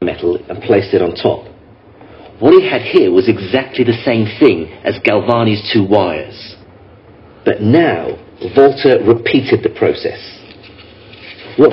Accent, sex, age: British, male, 50-69